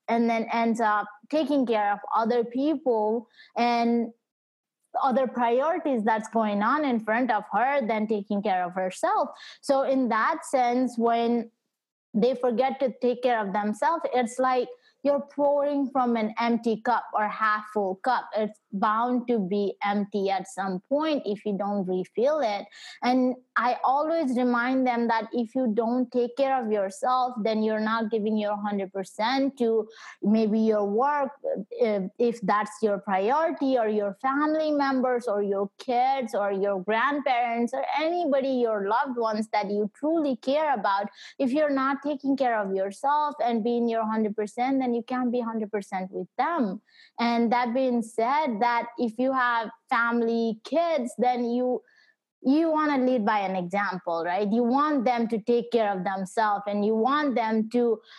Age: 20-39